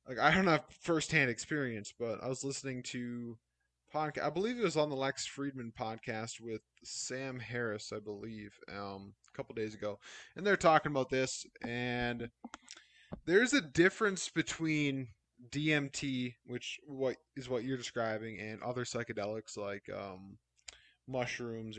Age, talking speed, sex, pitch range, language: 20-39, 145 wpm, male, 110-140 Hz, English